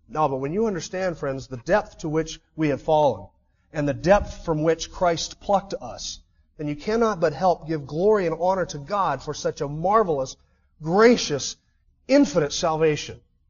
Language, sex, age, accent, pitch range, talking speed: English, male, 40-59, American, 140-190 Hz, 175 wpm